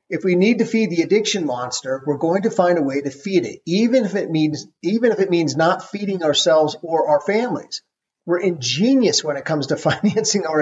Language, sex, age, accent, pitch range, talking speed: English, male, 40-59, American, 145-190 Hz, 220 wpm